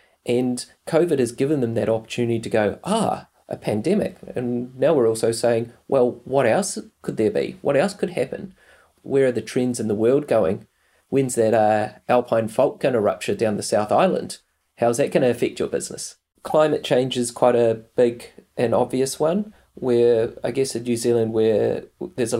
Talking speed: 195 wpm